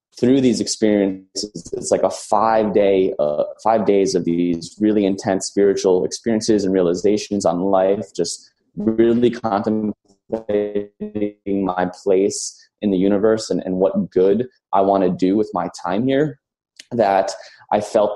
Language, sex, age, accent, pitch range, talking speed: English, male, 20-39, American, 95-115 Hz, 145 wpm